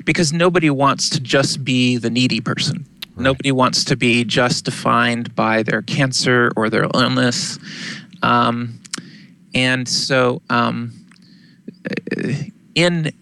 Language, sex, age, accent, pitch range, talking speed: English, male, 20-39, American, 125-180 Hz, 120 wpm